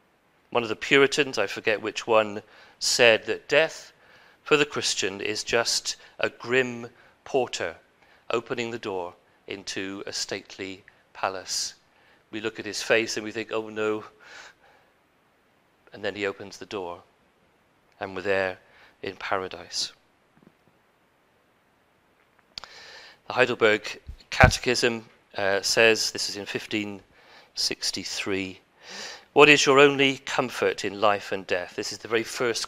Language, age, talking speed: English, 40-59, 130 wpm